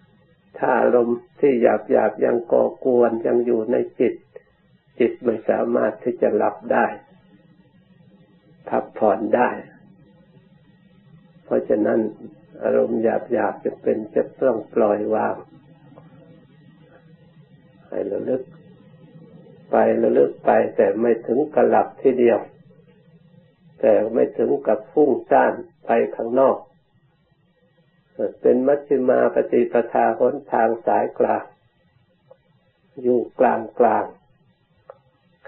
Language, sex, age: Thai, male, 60-79